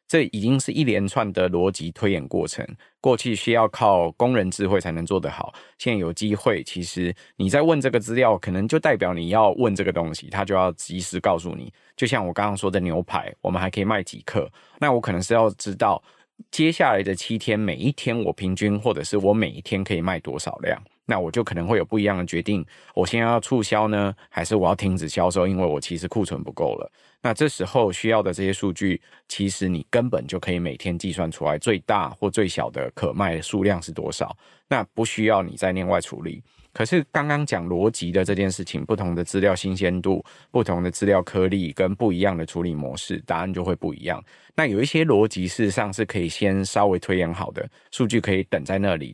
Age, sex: 20-39, male